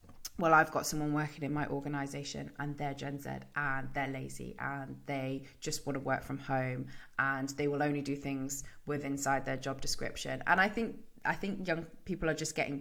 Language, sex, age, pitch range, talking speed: English, female, 20-39, 140-155 Hz, 205 wpm